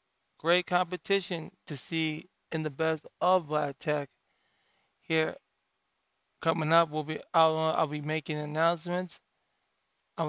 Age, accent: 20-39, American